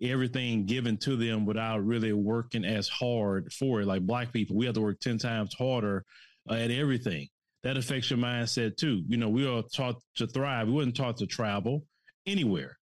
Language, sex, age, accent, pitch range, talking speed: English, male, 30-49, American, 115-150 Hz, 195 wpm